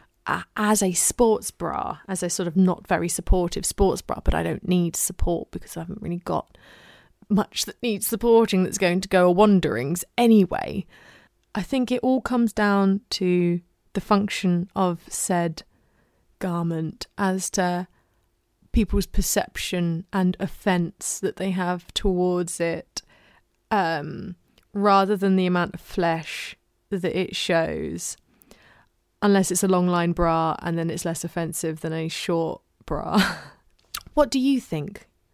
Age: 20-39